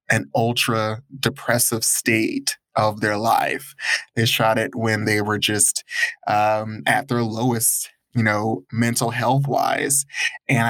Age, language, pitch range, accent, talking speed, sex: 20-39, English, 110-135 Hz, American, 135 wpm, male